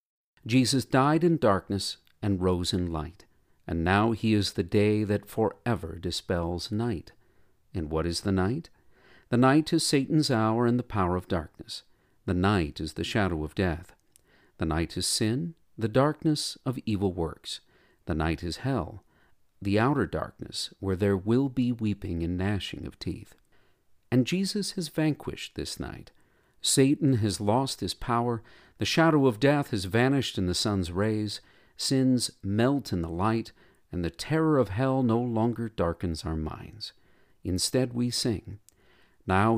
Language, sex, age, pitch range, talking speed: English, male, 50-69, 95-125 Hz, 160 wpm